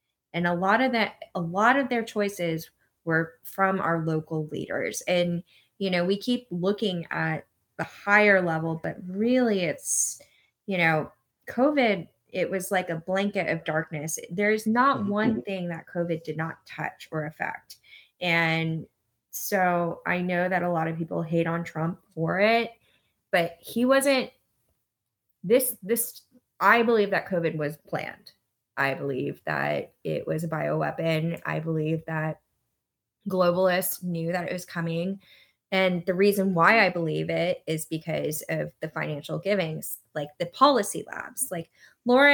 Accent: American